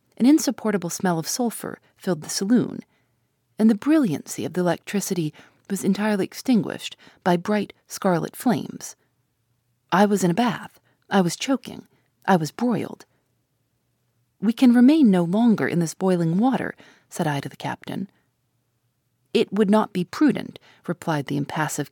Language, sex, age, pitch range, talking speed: English, female, 40-59, 145-215 Hz, 150 wpm